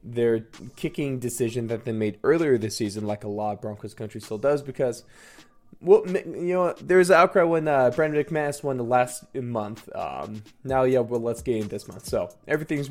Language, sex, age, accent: English, male, 20-39, American